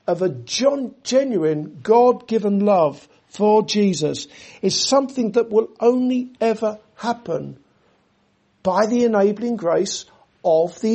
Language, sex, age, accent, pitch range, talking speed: English, male, 60-79, British, 165-235 Hz, 110 wpm